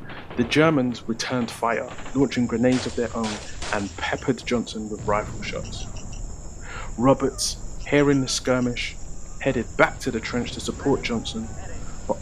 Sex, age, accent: male, 30-49, British